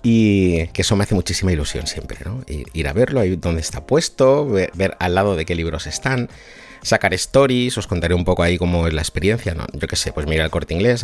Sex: male